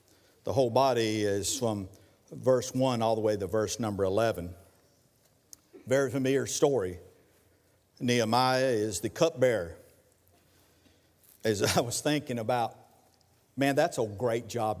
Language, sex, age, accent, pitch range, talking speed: English, male, 50-69, American, 100-155 Hz, 125 wpm